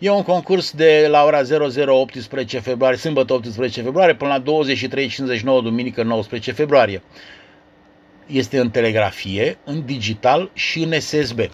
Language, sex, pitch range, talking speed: Romanian, male, 115-140 Hz, 135 wpm